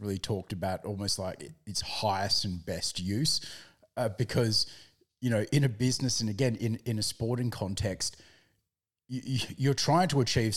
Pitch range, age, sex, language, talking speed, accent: 105-135 Hz, 30-49, male, English, 160 wpm, Australian